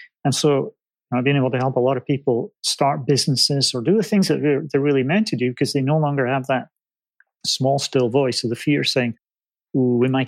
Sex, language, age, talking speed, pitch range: male, English, 30-49, 240 wpm, 125-155 Hz